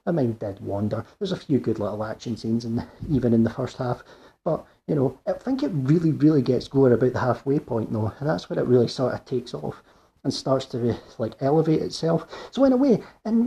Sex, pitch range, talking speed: male, 120-145 Hz, 235 wpm